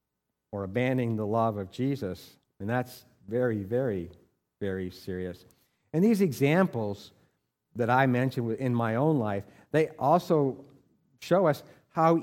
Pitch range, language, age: 110-150 Hz, English, 50-69